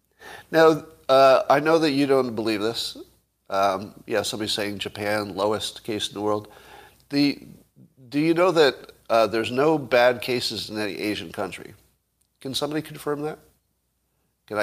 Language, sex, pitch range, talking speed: English, male, 105-140 Hz, 155 wpm